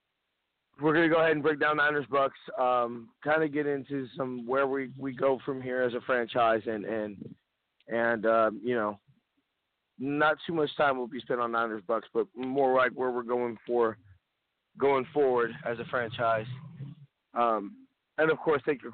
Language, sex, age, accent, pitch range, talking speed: English, male, 30-49, American, 105-135 Hz, 185 wpm